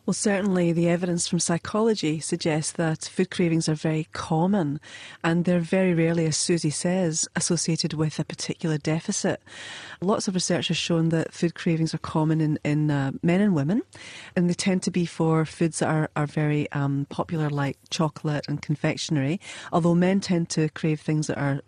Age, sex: 40-59, female